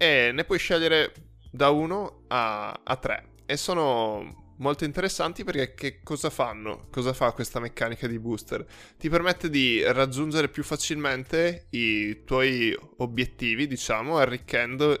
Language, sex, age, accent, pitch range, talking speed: Italian, male, 10-29, native, 115-145 Hz, 130 wpm